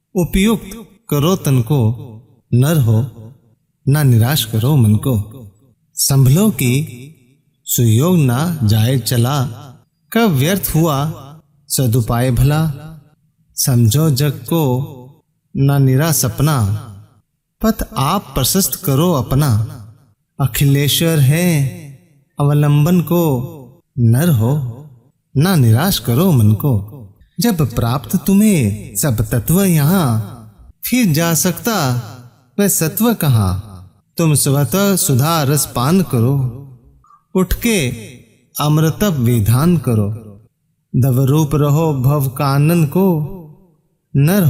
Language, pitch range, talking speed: Hindi, 125-165 Hz, 95 wpm